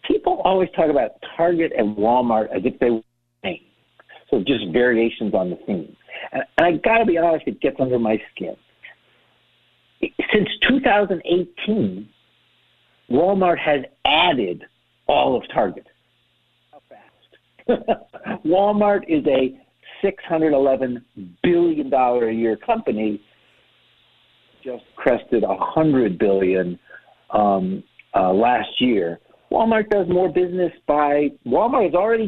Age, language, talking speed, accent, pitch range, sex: 50-69, English, 120 wpm, American, 120-190 Hz, male